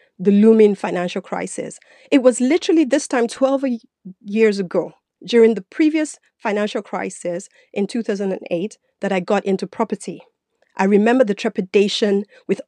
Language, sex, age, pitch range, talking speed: English, female, 30-49, 190-240 Hz, 135 wpm